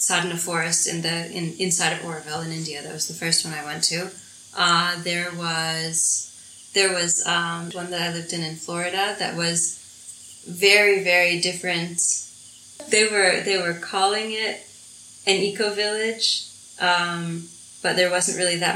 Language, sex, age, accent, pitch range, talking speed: German, female, 20-39, American, 170-185 Hz, 165 wpm